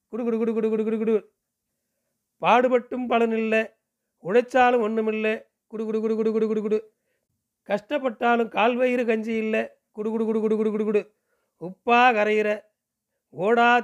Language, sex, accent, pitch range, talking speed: Tamil, male, native, 210-230 Hz, 125 wpm